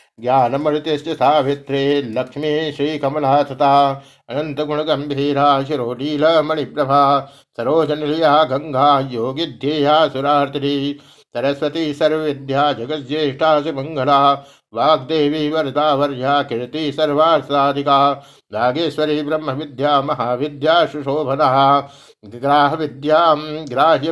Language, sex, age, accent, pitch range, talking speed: Hindi, male, 60-79, native, 140-155 Hz, 65 wpm